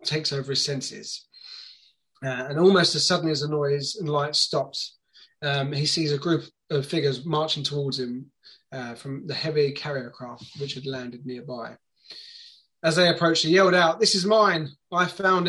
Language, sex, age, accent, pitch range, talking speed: English, male, 20-39, British, 140-170 Hz, 180 wpm